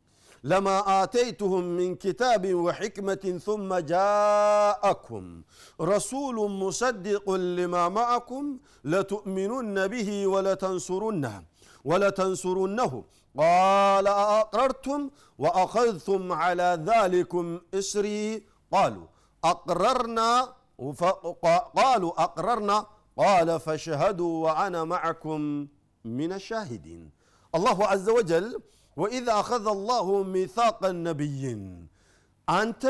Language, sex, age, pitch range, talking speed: Amharic, male, 50-69, 155-220 Hz, 80 wpm